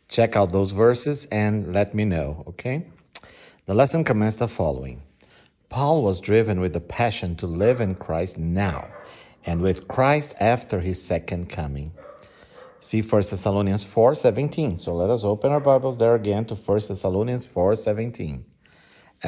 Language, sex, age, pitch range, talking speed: English, male, 50-69, 90-115 Hz, 150 wpm